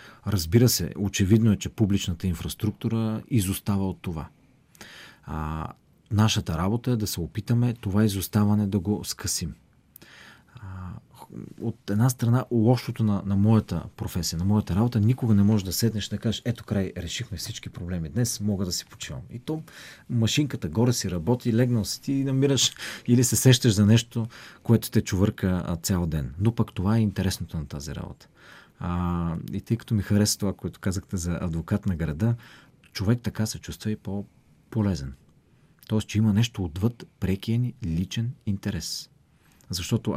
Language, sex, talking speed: Bulgarian, male, 155 wpm